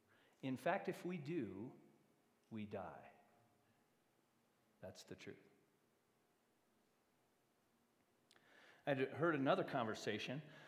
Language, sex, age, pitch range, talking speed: English, male, 40-59, 110-150 Hz, 80 wpm